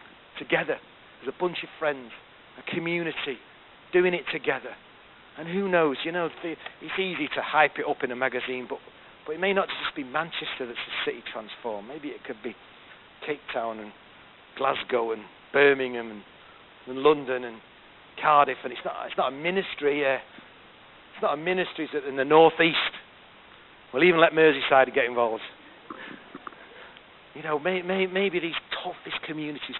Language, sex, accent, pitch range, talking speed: English, male, British, 130-180 Hz, 170 wpm